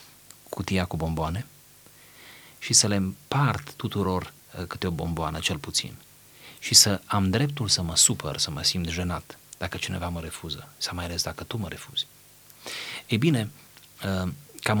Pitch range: 85-115 Hz